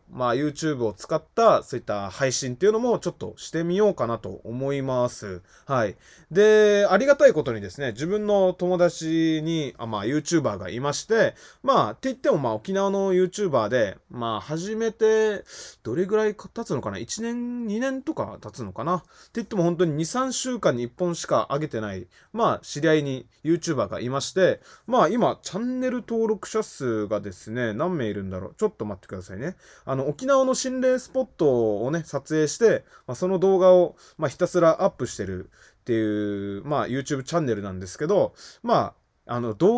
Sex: male